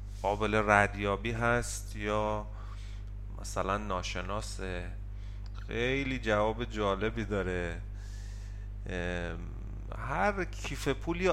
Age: 30-49